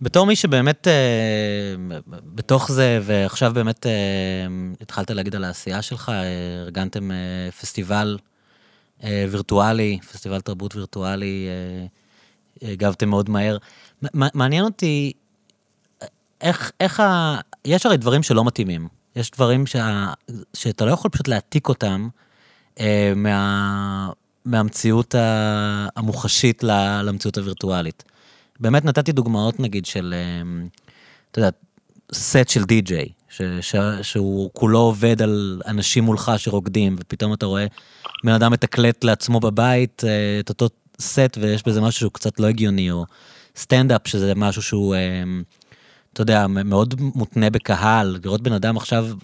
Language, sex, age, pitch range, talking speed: Hebrew, male, 30-49, 100-120 Hz, 115 wpm